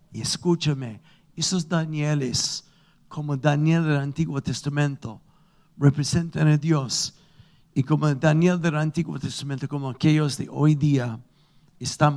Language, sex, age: Spanish, male, 60-79